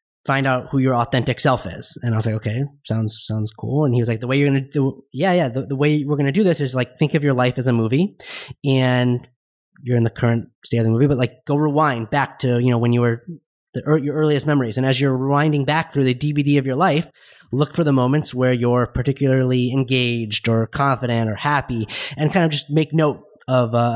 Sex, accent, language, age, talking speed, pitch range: male, American, English, 30-49, 245 wpm, 125-145 Hz